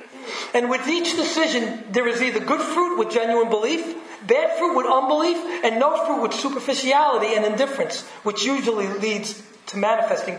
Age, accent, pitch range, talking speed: 40-59, American, 205-270 Hz, 160 wpm